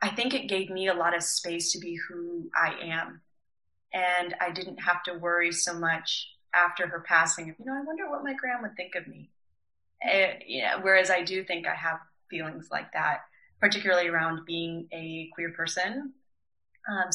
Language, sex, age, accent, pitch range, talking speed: English, female, 20-39, American, 165-185 Hz, 180 wpm